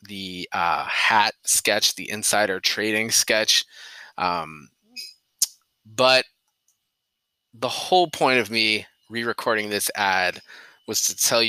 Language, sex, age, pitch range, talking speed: English, male, 20-39, 95-115 Hz, 110 wpm